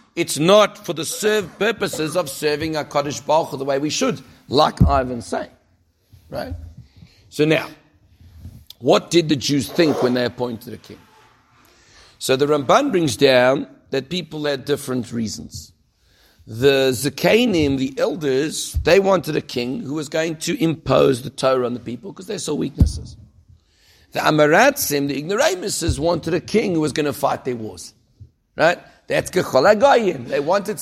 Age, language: 50-69, English